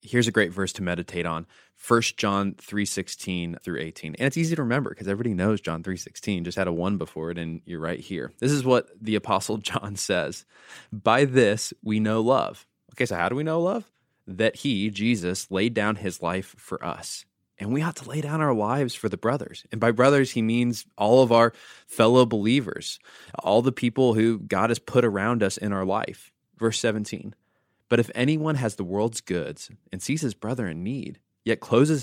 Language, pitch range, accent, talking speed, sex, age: English, 100-125 Hz, American, 205 wpm, male, 20-39